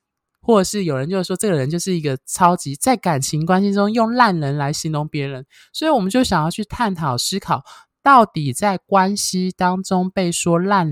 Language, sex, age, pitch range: Chinese, male, 20-39, 140-190 Hz